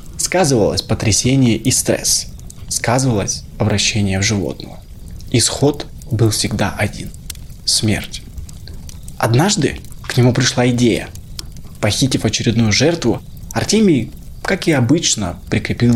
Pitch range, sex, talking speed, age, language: 105-130 Hz, male, 100 wpm, 20-39, Russian